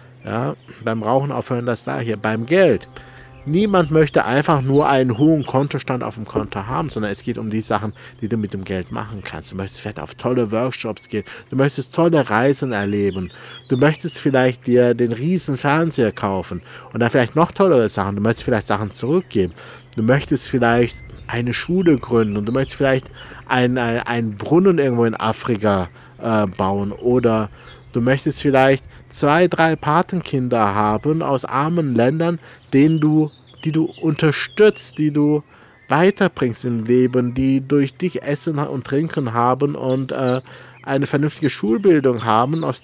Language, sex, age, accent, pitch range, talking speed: German, male, 50-69, German, 110-145 Hz, 160 wpm